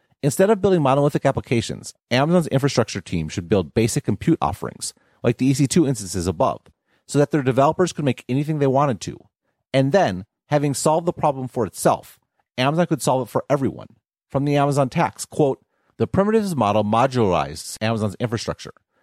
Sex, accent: male, American